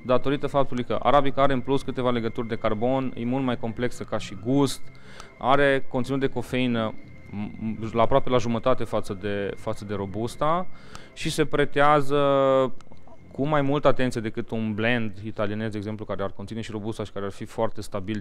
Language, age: Romanian, 30-49